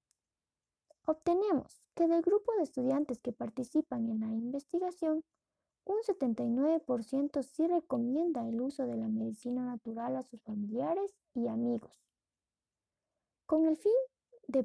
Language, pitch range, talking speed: Spanish, 240-315 Hz, 125 wpm